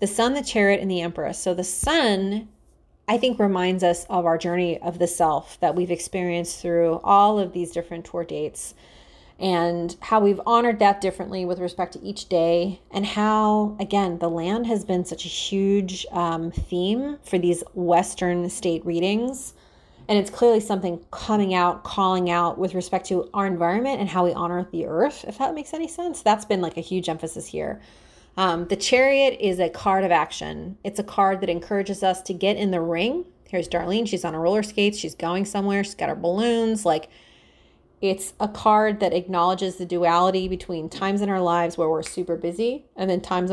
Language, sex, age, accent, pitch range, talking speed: English, female, 30-49, American, 175-205 Hz, 195 wpm